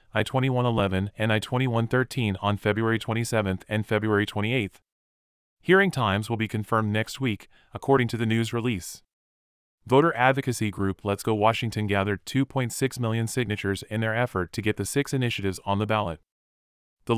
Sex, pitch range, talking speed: male, 100-120 Hz, 150 wpm